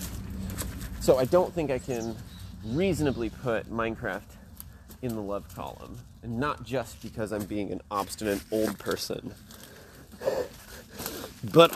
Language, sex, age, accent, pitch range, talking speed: English, male, 30-49, American, 105-135 Hz, 120 wpm